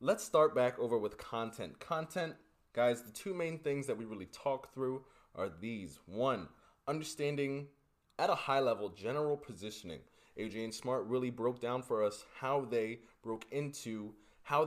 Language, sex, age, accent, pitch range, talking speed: English, male, 20-39, American, 105-140 Hz, 165 wpm